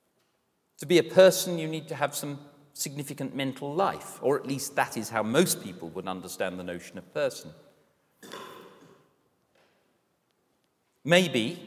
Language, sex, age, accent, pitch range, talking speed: English, male, 40-59, British, 130-175 Hz, 140 wpm